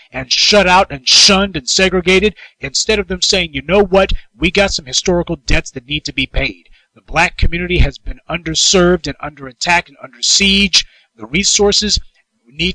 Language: English